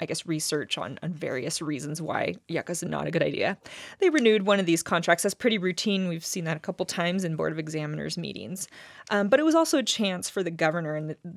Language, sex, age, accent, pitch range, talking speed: English, female, 20-39, American, 160-190 Hz, 250 wpm